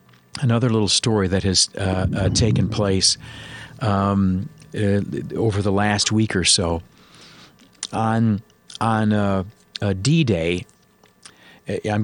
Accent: American